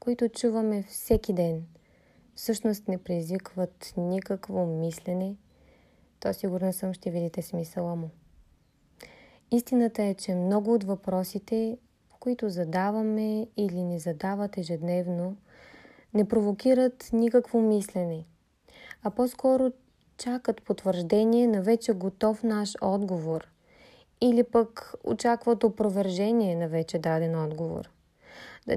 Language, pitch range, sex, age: Bulgarian, 180-225 Hz, female, 20-39